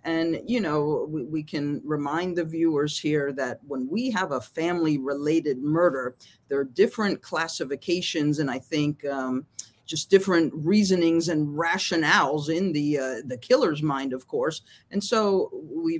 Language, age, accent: English, 40-59, American